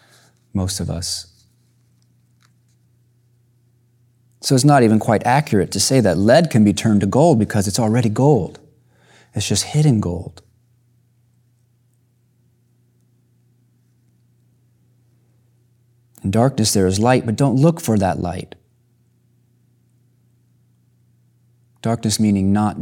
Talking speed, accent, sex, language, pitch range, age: 105 wpm, American, male, English, 100-120 Hz, 30-49